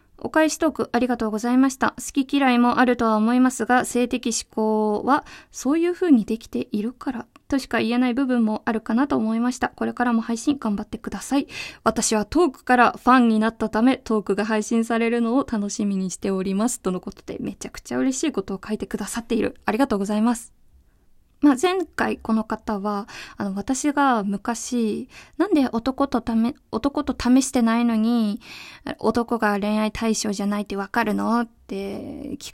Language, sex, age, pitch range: Japanese, female, 20-39, 215-275 Hz